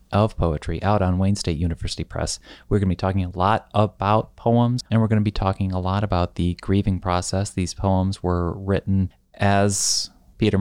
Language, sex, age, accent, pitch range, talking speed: English, male, 30-49, American, 90-105 Hz, 185 wpm